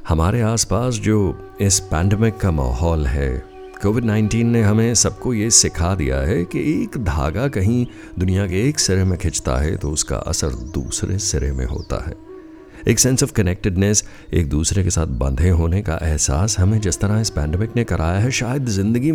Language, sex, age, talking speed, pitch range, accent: Hindi, male, 50-69, 180 wpm, 75-115 Hz, native